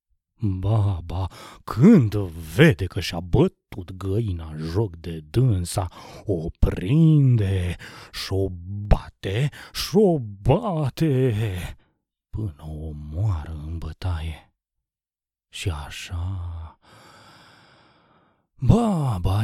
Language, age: Romanian, 30-49